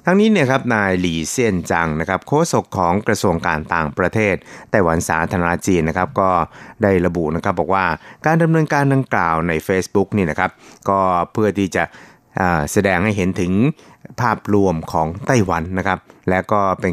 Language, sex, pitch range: Thai, male, 85-105 Hz